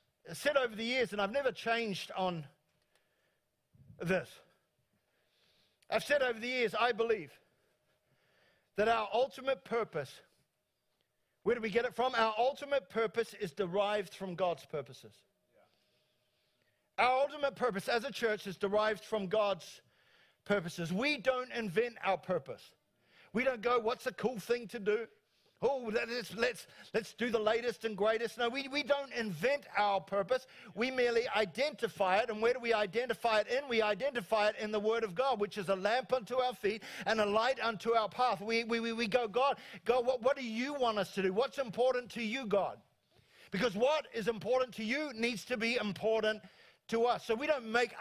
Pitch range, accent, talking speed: 205-250 Hz, Australian, 180 wpm